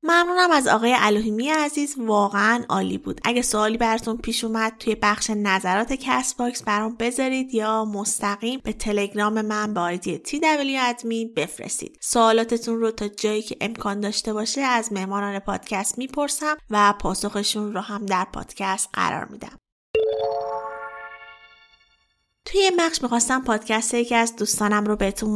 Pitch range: 205-245 Hz